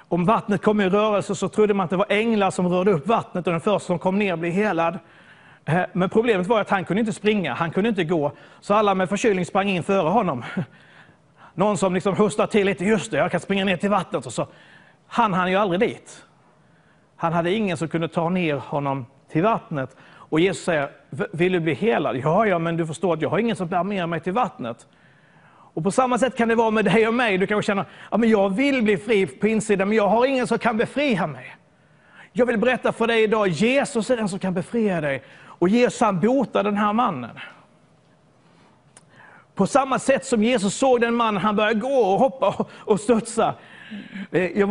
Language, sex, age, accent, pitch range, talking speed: Swedish, male, 30-49, native, 175-220 Hz, 215 wpm